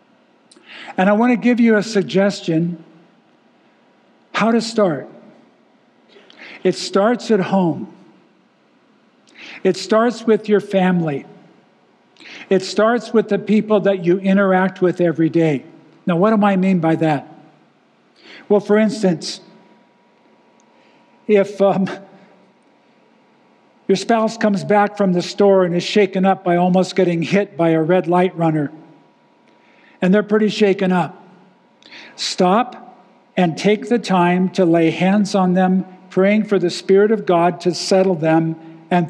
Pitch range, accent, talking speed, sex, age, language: 175-205 Hz, American, 135 wpm, male, 50-69, English